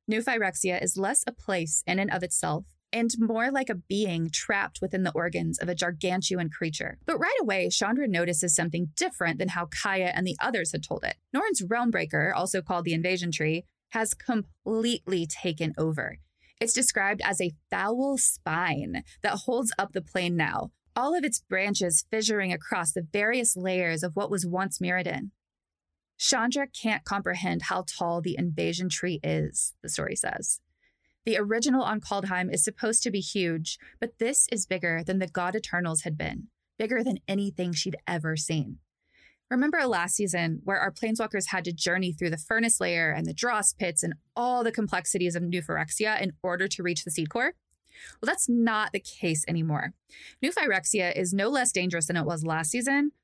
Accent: American